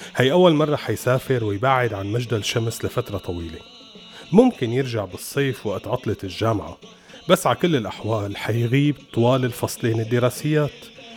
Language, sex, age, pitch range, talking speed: Arabic, male, 30-49, 110-140 Hz, 130 wpm